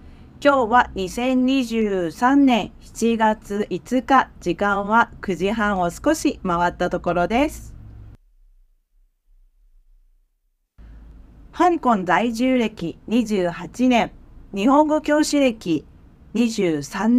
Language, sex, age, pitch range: Japanese, female, 40-59, 180-260 Hz